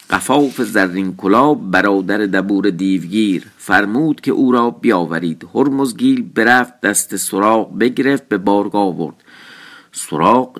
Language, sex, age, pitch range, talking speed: Persian, male, 50-69, 95-115 Hz, 110 wpm